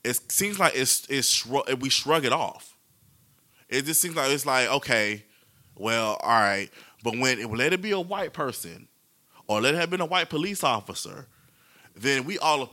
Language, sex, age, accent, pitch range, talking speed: English, male, 20-39, American, 115-150 Hz, 200 wpm